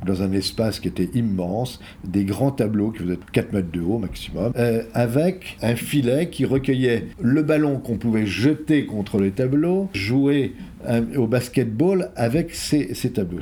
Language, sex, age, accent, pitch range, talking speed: French, male, 50-69, French, 100-135 Hz, 165 wpm